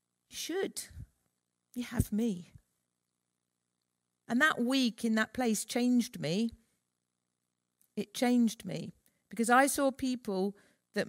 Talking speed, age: 110 wpm, 50-69